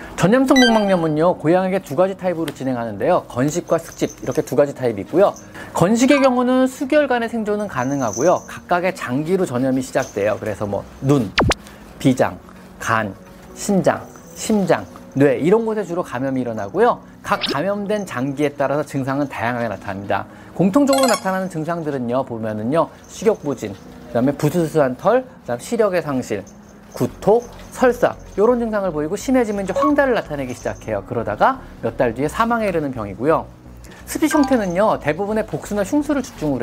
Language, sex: Korean, male